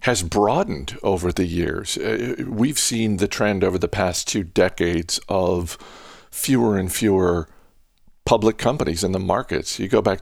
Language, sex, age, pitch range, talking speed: English, male, 50-69, 90-110 Hz, 155 wpm